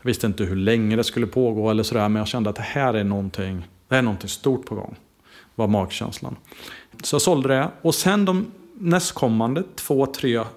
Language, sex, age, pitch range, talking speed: Swedish, male, 30-49, 110-155 Hz, 210 wpm